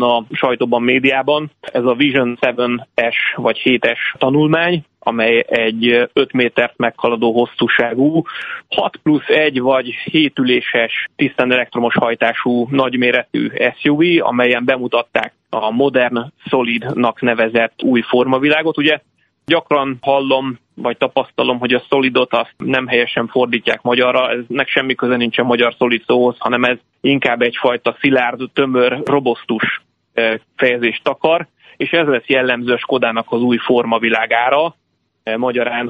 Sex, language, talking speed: male, Hungarian, 120 wpm